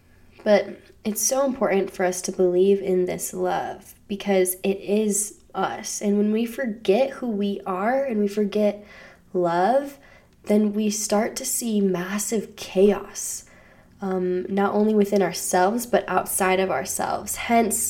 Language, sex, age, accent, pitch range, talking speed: English, female, 10-29, American, 180-215 Hz, 145 wpm